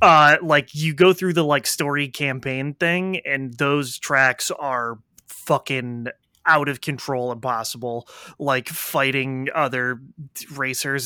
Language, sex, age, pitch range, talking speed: English, male, 20-39, 130-170 Hz, 125 wpm